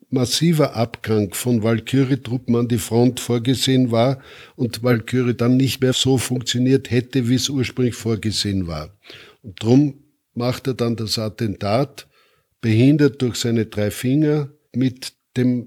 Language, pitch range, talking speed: German, 110-130 Hz, 140 wpm